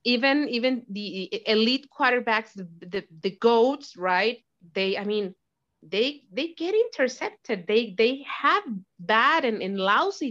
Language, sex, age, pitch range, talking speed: English, female, 30-49, 195-255 Hz, 140 wpm